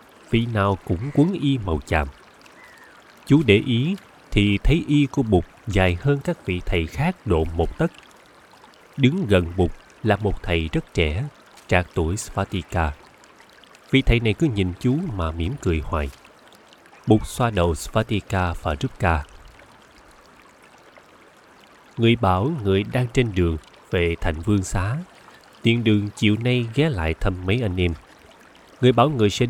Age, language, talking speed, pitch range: 20-39, Vietnamese, 155 wpm, 90-125 Hz